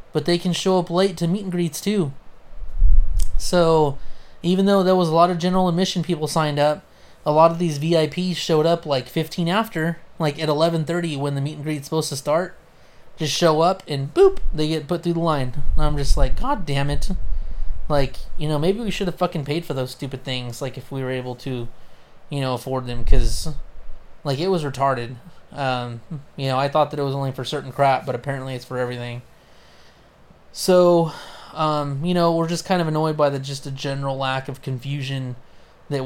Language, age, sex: English, 20-39, male